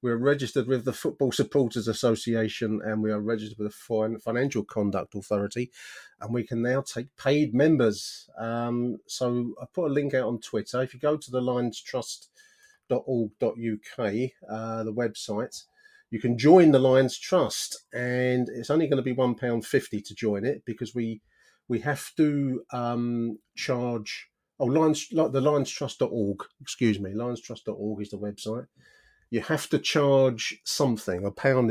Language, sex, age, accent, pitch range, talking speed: English, male, 40-59, British, 105-130 Hz, 165 wpm